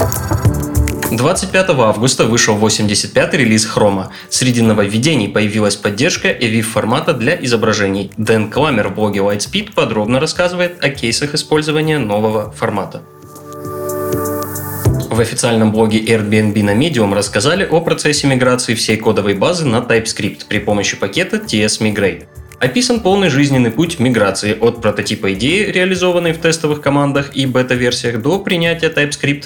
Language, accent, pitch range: Russian, native, 105-145 Hz